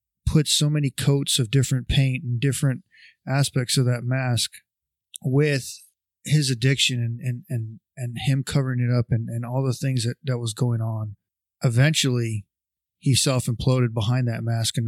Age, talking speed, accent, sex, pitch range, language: 20-39, 165 wpm, American, male, 115-135 Hz, English